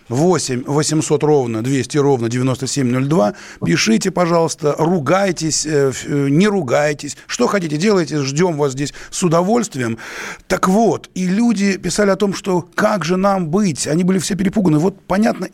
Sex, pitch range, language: male, 135-175 Hz, Russian